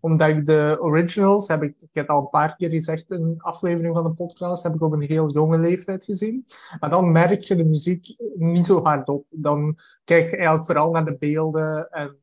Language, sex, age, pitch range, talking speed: Dutch, male, 30-49, 155-175 Hz, 225 wpm